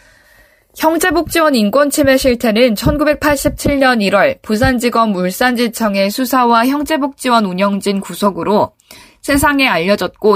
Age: 20-39